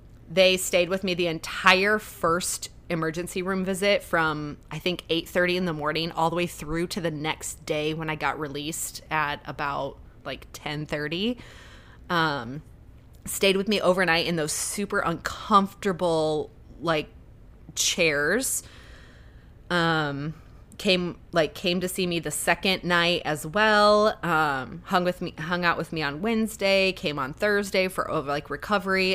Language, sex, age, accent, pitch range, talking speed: English, female, 20-39, American, 150-180 Hz, 150 wpm